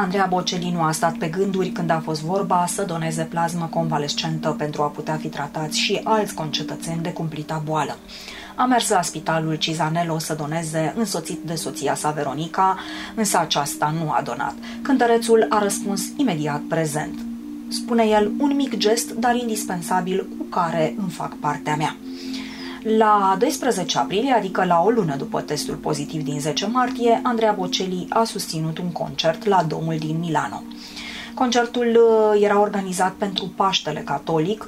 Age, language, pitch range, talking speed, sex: 20-39, Romanian, 165-225 Hz, 155 wpm, female